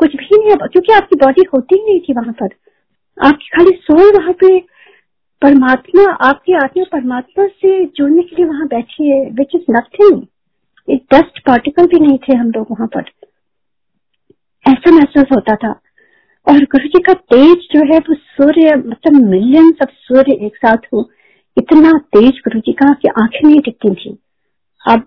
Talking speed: 165 wpm